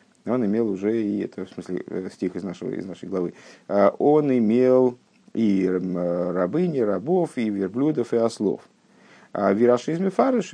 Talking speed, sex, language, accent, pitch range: 150 wpm, male, Russian, native, 95-140 Hz